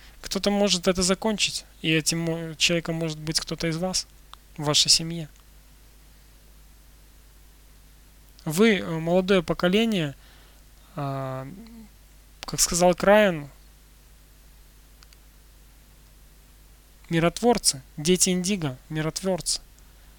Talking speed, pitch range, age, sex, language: 75 wpm, 150-190 Hz, 20-39, male, Russian